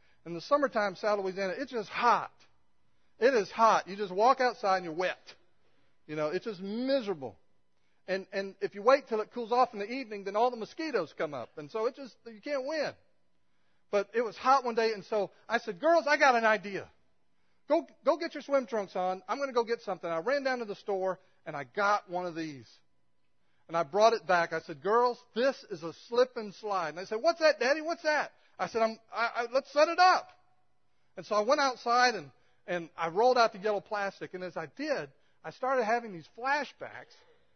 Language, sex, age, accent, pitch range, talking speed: English, male, 40-59, American, 195-275 Hz, 220 wpm